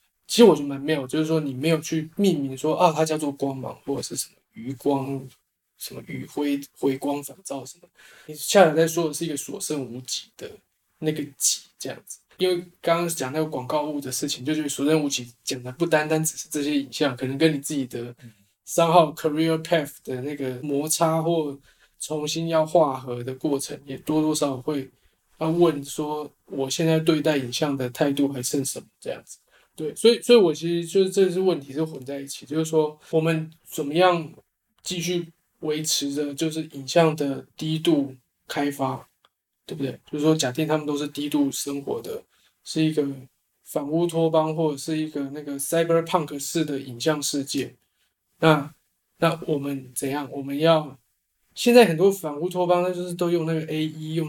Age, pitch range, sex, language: 20-39, 140-165 Hz, male, Chinese